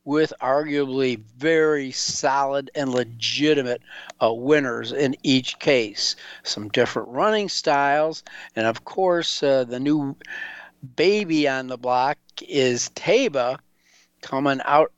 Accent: American